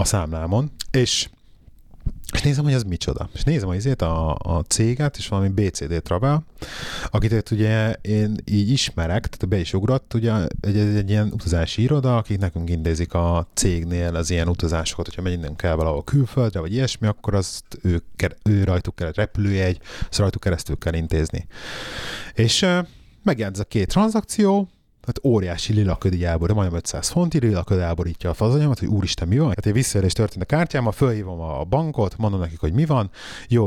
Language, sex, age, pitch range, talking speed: Hungarian, male, 30-49, 85-115 Hz, 175 wpm